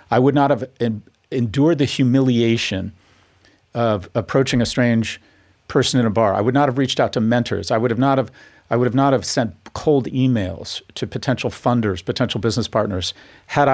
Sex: male